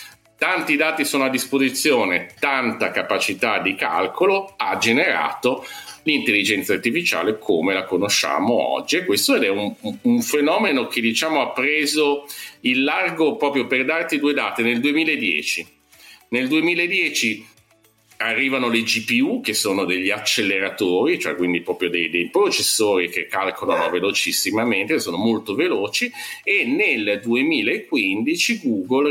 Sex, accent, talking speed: male, native, 120 wpm